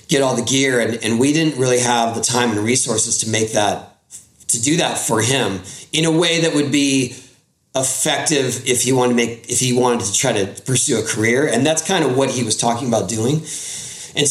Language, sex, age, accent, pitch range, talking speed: English, male, 30-49, American, 115-145 Hz, 225 wpm